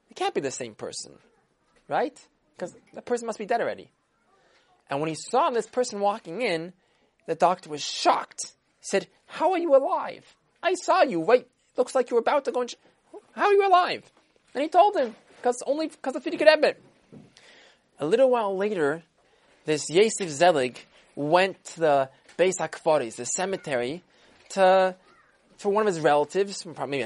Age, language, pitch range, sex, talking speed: 20-39, English, 180-265 Hz, male, 175 wpm